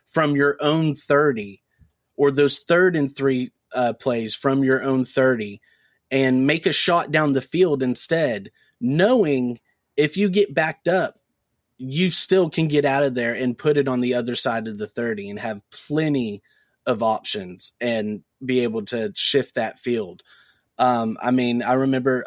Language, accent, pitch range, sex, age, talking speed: English, American, 115-135 Hz, male, 30-49, 170 wpm